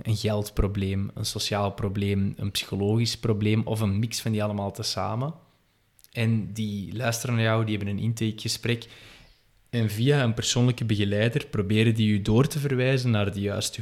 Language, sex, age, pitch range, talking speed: Dutch, male, 20-39, 105-120 Hz, 165 wpm